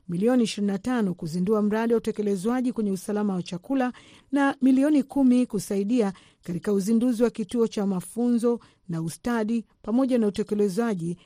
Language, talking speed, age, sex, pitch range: Swahili, 130 wpm, 50-69, female, 195-240 Hz